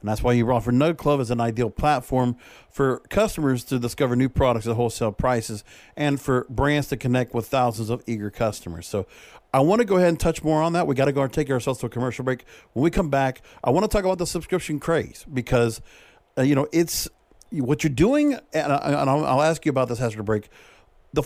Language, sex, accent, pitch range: English, male, American, 120-160 Hz